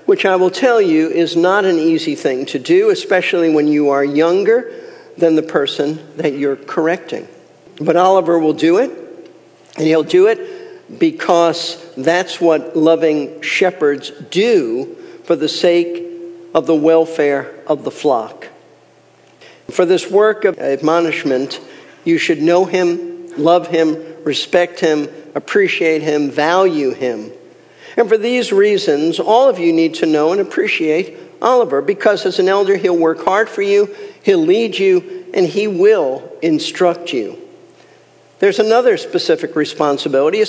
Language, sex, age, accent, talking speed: English, male, 50-69, American, 145 wpm